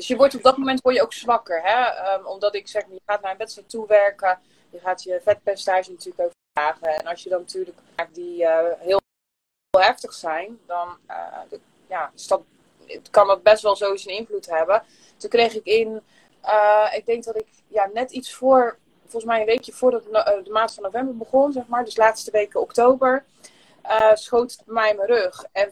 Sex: female